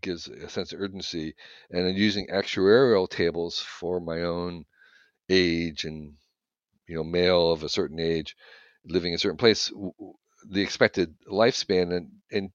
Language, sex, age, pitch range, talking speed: English, male, 50-69, 90-115 Hz, 155 wpm